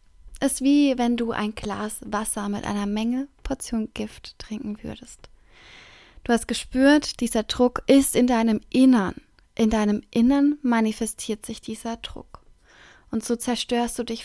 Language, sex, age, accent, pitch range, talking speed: German, female, 20-39, German, 215-250 Hz, 150 wpm